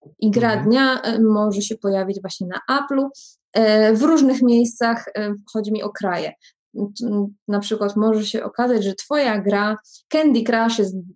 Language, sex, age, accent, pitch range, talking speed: Polish, female, 20-39, native, 200-230 Hz, 145 wpm